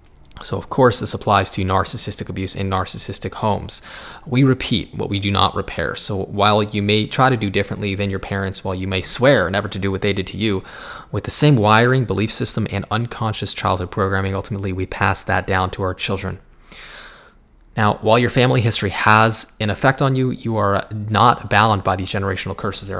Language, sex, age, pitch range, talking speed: English, male, 20-39, 95-115 Hz, 205 wpm